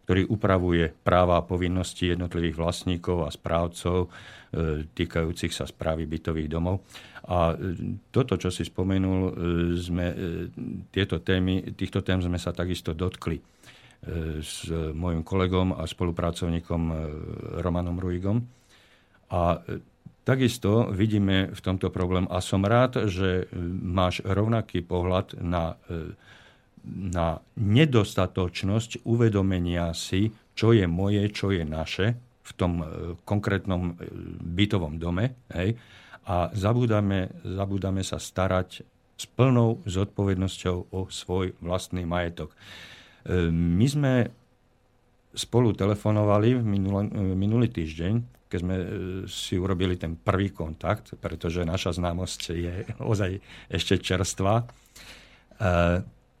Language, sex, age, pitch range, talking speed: Slovak, male, 50-69, 85-105 Hz, 100 wpm